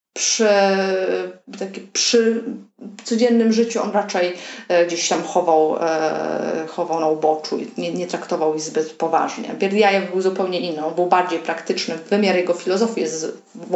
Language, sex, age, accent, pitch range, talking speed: Polish, female, 30-49, native, 165-205 Hz, 130 wpm